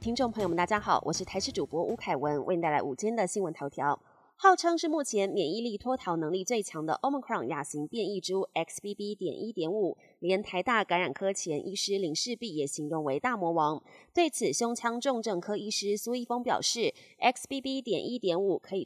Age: 20-39